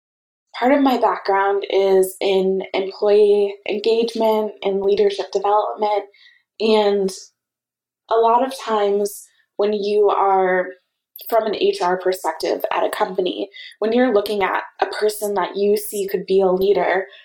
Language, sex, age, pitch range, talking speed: English, female, 20-39, 195-260 Hz, 135 wpm